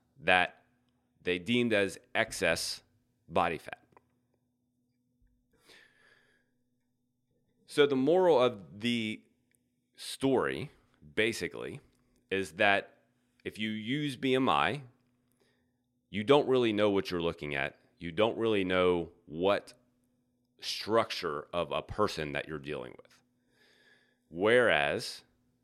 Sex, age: male, 30-49